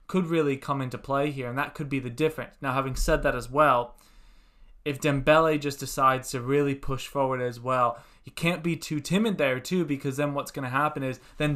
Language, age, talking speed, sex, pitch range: English, 20-39, 225 wpm, male, 125-150 Hz